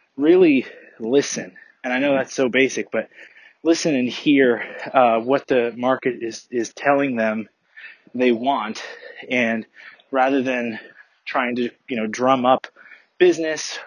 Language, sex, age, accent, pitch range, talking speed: English, male, 20-39, American, 115-140 Hz, 140 wpm